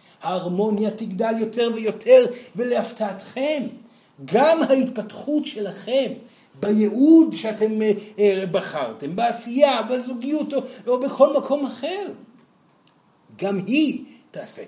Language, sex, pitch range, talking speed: Hebrew, male, 210-280 Hz, 85 wpm